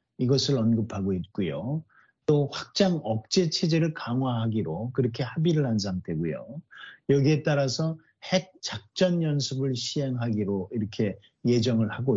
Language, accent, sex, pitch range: Korean, native, male, 110-150 Hz